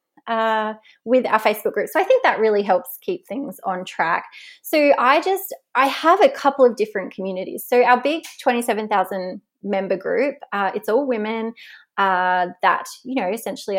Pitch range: 195-270 Hz